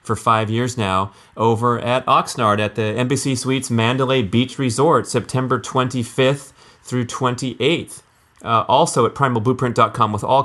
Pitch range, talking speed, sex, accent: 115-130 Hz, 140 wpm, male, American